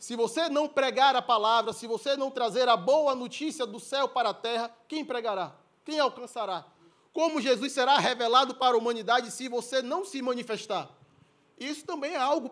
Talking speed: 180 wpm